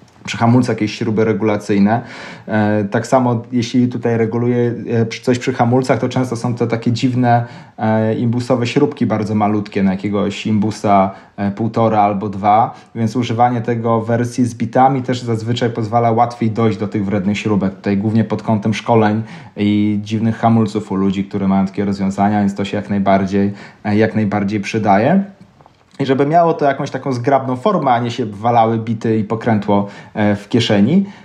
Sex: male